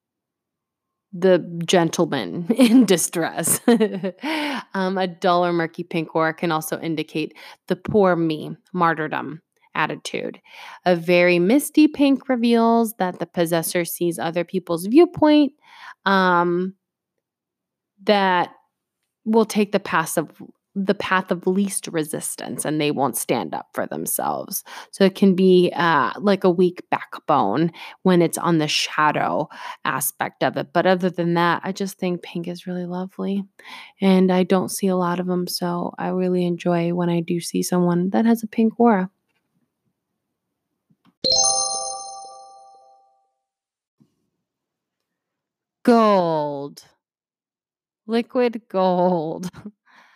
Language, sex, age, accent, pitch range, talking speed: English, female, 20-39, American, 170-200 Hz, 120 wpm